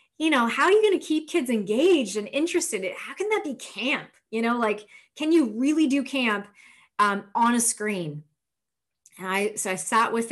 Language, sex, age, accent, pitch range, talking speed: English, female, 30-49, American, 190-250 Hz, 215 wpm